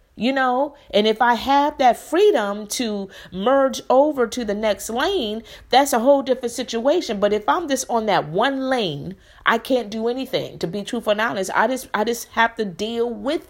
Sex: female